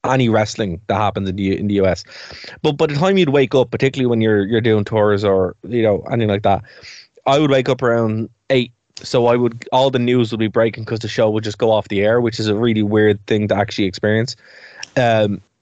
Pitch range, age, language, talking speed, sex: 105-125 Hz, 20-39, English, 240 wpm, male